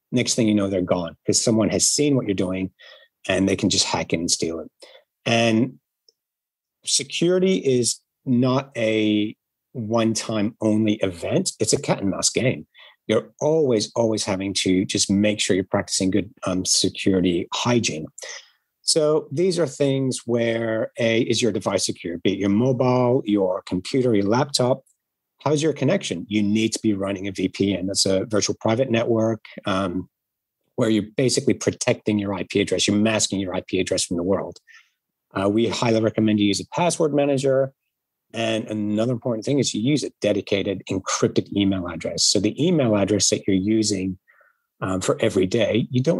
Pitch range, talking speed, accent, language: 100-125 Hz, 175 wpm, American, English